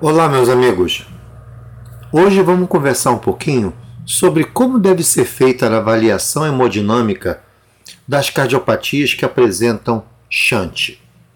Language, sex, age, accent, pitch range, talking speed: Portuguese, male, 50-69, Brazilian, 115-175 Hz, 110 wpm